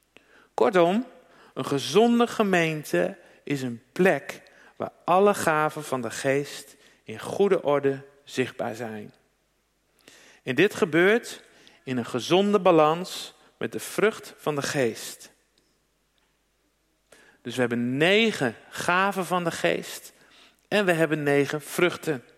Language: Dutch